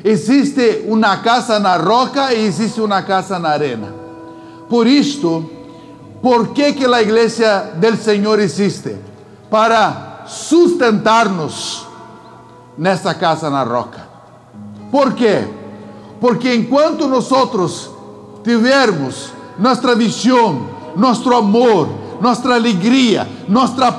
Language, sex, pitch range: English, male, 205-275 Hz